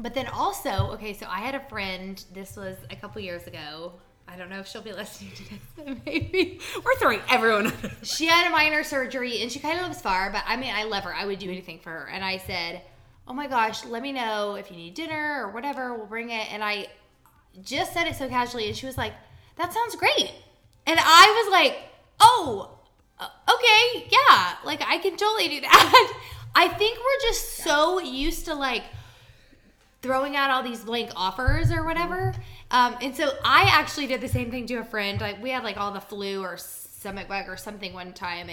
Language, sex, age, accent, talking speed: English, female, 20-39, American, 220 wpm